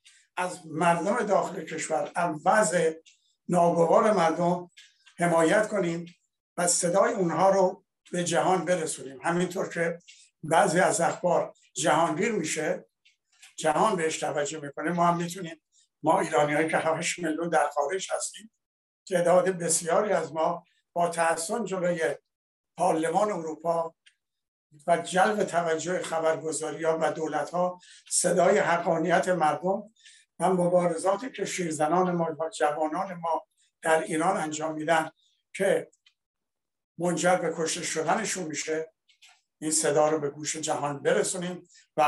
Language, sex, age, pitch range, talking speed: Persian, male, 60-79, 155-180 Hz, 115 wpm